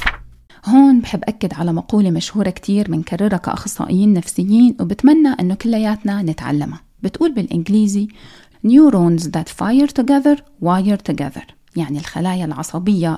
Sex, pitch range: female, 175-255 Hz